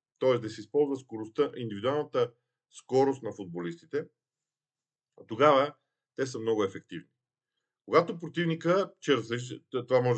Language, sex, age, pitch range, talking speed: Bulgarian, male, 40-59, 110-150 Hz, 125 wpm